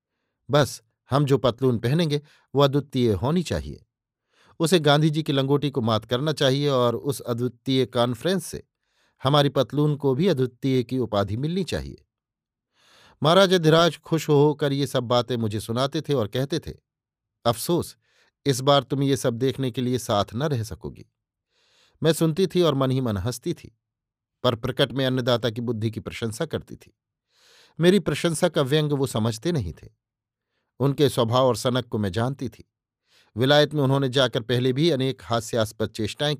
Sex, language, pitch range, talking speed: male, Hindi, 115-145 Hz, 165 wpm